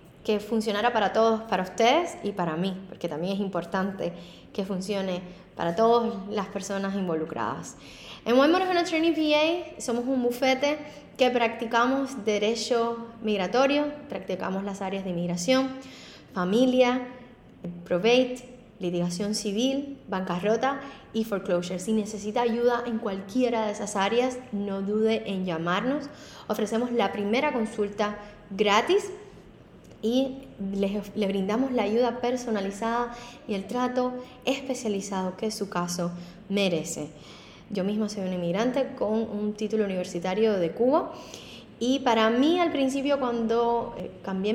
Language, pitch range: English, 200-250 Hz